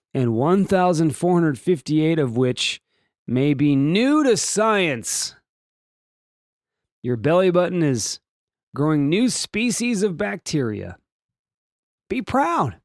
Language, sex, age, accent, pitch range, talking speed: English, male, 30-49, American, 125-185 Hz, 95 wpm